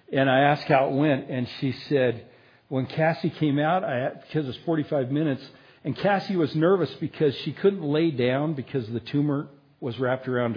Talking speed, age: 185 wpm, 60-79